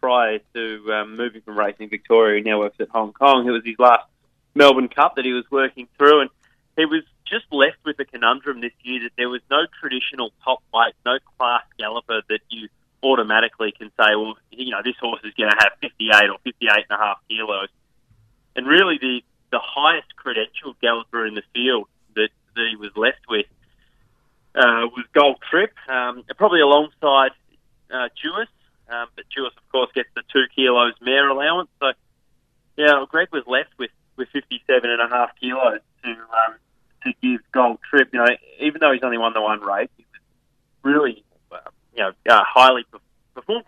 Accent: Australian